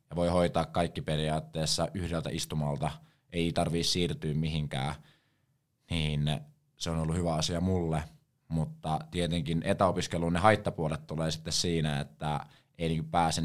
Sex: male